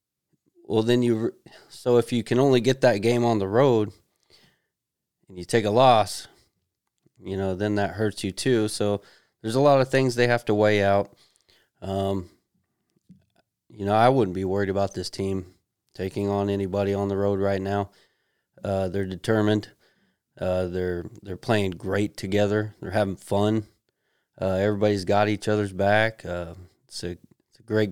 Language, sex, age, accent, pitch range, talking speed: English, male, 20-39, American, 95-110 Hz, 170 wpm